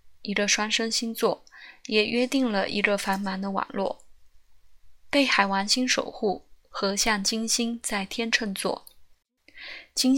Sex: female